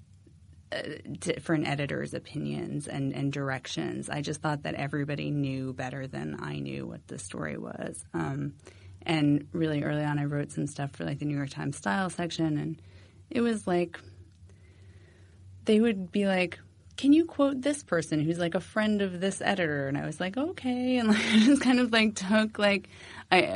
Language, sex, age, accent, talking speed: English, female, 30-49, American, 185 wpm